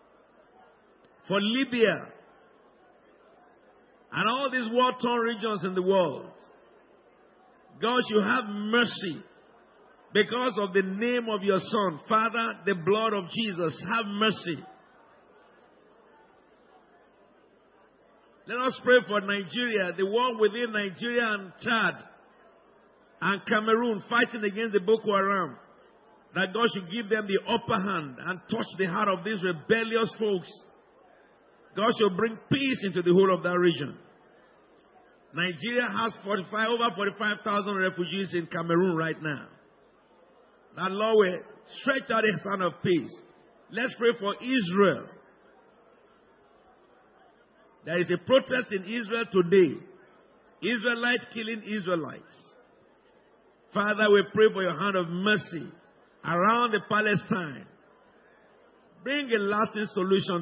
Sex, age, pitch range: male, 50-69, 185-230 Hz